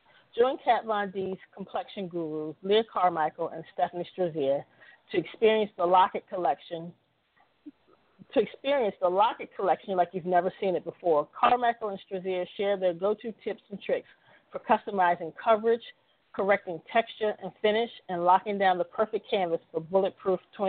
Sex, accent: female, American